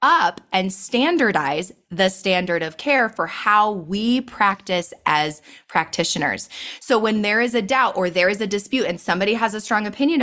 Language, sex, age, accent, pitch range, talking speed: English, female, 20-39, American, 195-265 Hz, 175 wpm